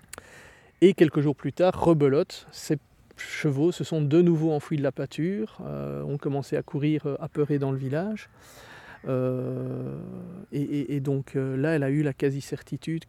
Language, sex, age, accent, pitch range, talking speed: French, male, 40-59, French, 130-150 Hz, 160 wpm